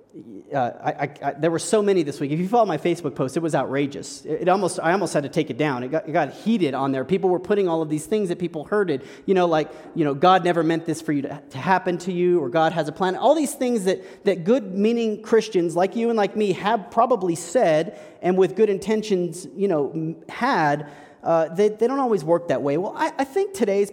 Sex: male